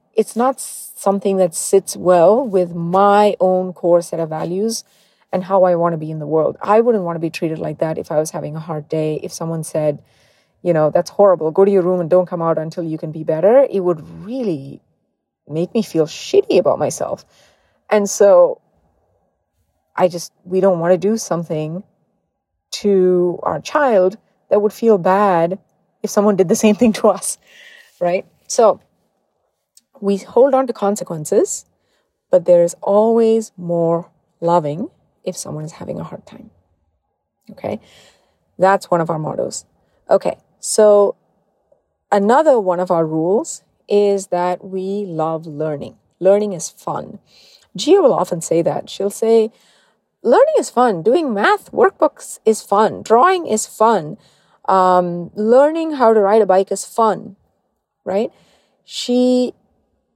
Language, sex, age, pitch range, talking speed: English, female, 30-49, 170-220 Hz, 160 wpm